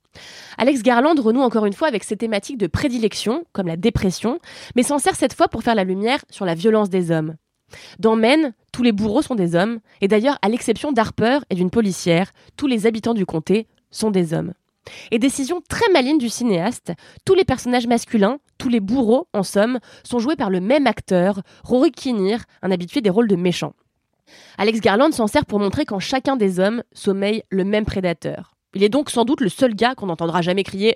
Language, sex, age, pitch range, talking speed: French, female, 20-39, 190-250 Hz, 205 wpm